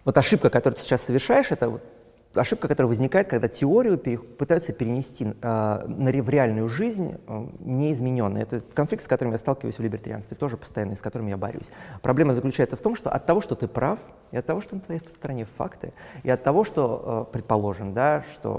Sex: male